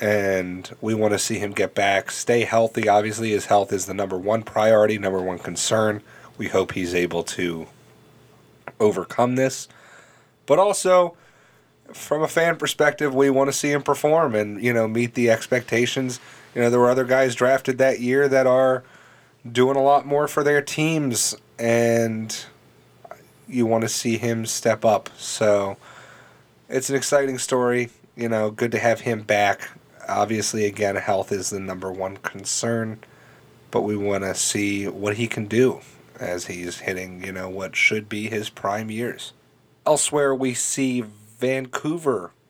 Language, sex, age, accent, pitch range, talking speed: English, male, 30-49, American, 105-130 Hz, 165 wpm